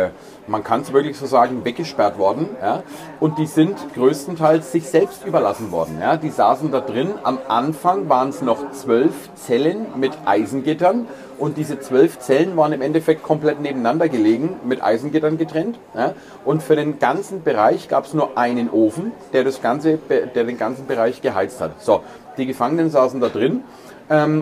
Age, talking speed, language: 40-59, 160 wpm, German